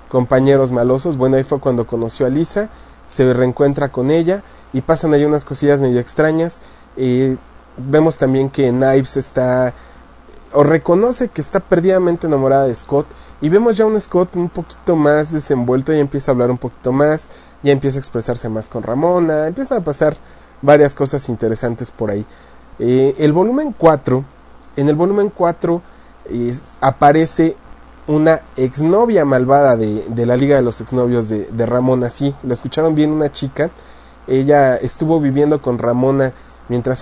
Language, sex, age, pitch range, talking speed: English, male, 30-49, 125-160 Hz, 160 wpm